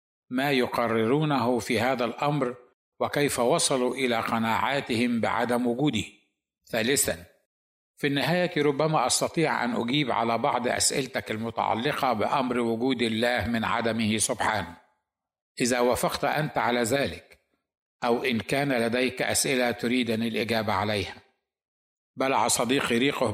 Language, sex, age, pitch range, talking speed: Arabic, male, 60-79, 115-135 Hz, 115 wpm